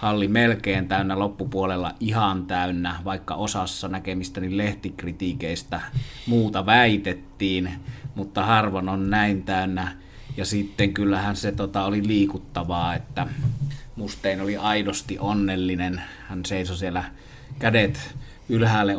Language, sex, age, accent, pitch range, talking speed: Finnish, male, 30-49, native, 95-115 Hz, 110 wpm